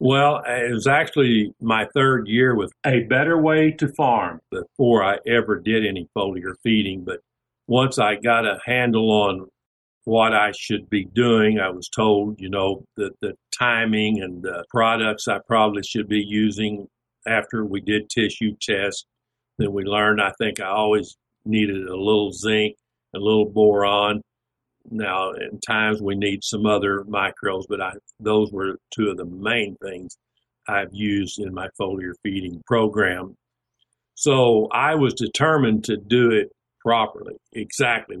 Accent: American